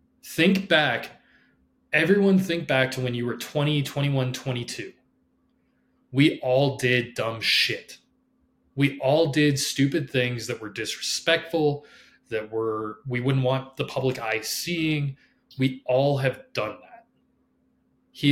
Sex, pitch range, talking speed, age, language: male, 130-160 Hz, 130 wpm, 20-39, English